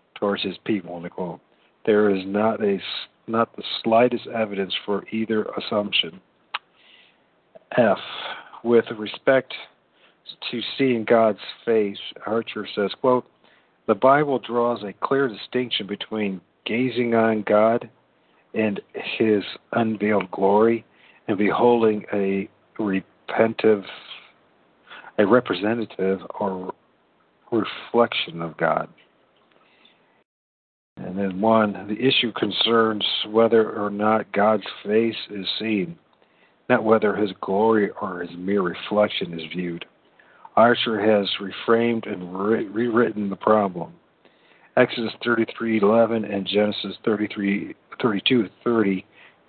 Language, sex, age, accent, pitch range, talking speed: English, male, 50-69, American, 100-115 Hz, 100 wpm